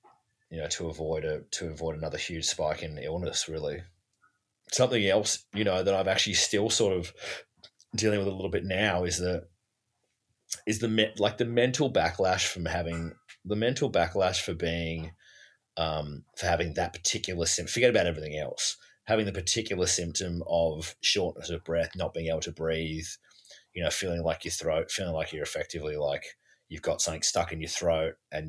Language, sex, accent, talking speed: English, male, Australian, 180 wpm